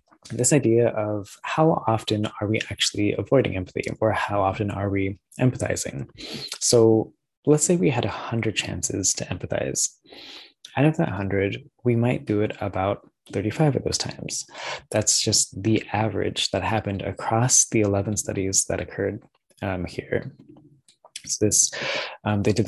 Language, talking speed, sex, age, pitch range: English, 150 wpm, male, 20-39, 100-120 Hz